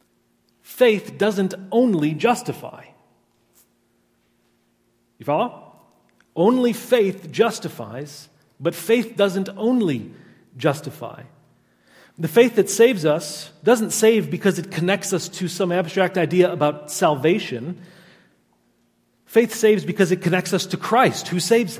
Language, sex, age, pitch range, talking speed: English, male, 40-59, 155-200 Hz, 115 wpm